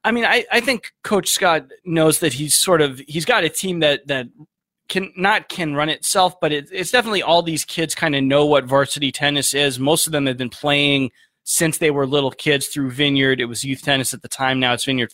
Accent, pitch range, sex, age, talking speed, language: American, 130-155 Hz, male, 20-39, 240 wpm, English